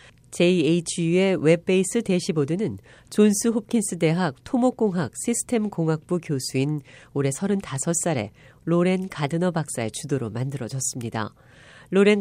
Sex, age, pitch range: female, 40-59, 135-195 Hz